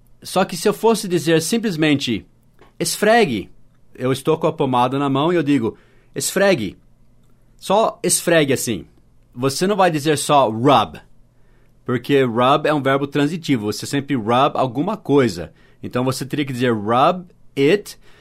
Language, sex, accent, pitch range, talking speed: English, male, Brazilian, 120-160 Hz, 150 wpm